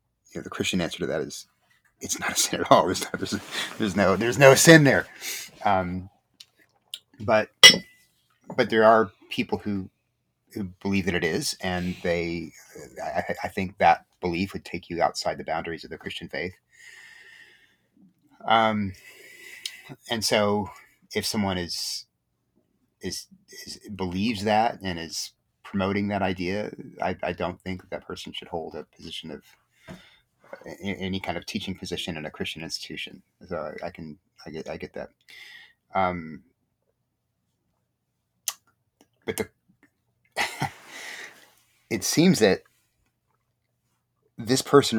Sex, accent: male, American